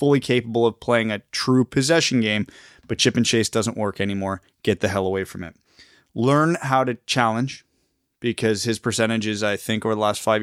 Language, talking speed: English, 200 wpm